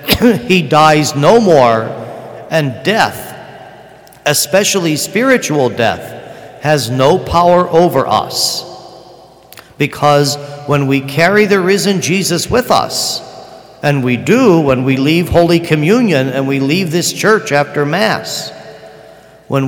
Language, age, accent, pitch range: English, 50-69, American, 140-210 Hz